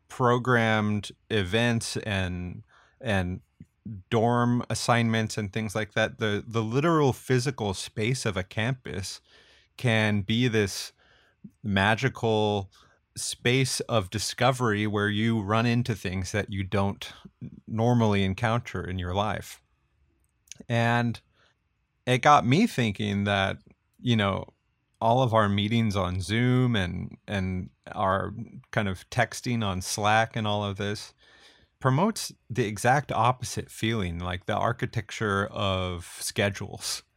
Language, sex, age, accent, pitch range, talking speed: English, male, 30-49, American, 100-115 Hz, 120 wpm